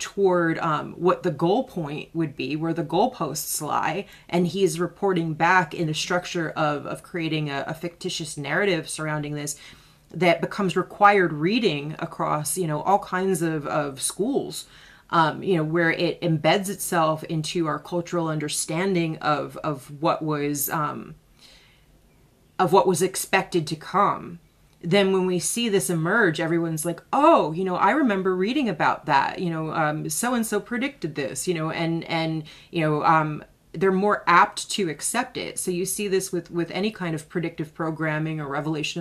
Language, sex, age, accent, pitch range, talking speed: English, female, 30-49, American, 155-185 Hz, 170 wpm